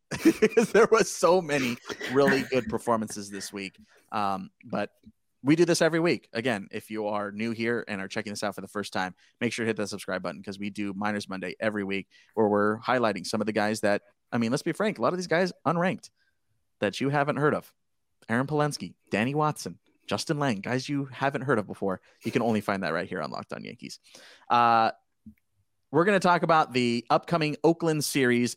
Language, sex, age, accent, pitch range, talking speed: English, male, 30-49, American, 105-145 Hz, 215 wpm